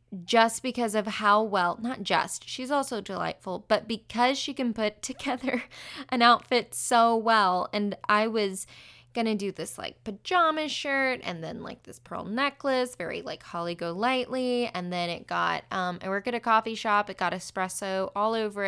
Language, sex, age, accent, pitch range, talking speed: English, female, 10-29, American, 195-245 Hz, 180 wpm